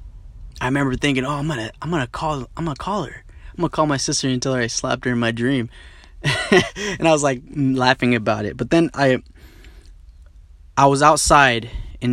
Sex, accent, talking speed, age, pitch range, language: male, American, 195 wpm, 20-39, 95-140 Hz, English